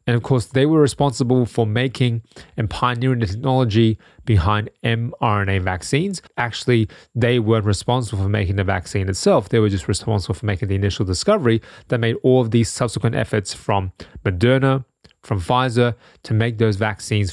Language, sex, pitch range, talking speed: English, male, 100-125 Hz, 165 wpm